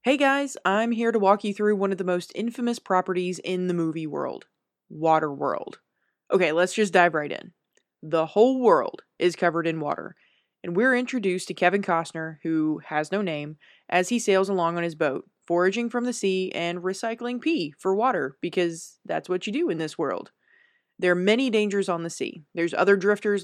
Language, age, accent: English, 20-39, American